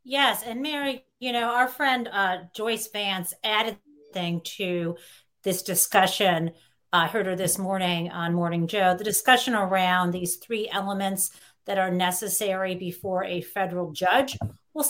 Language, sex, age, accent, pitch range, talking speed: English, female, 40-59, American, 170-210 Hz, 150 wpm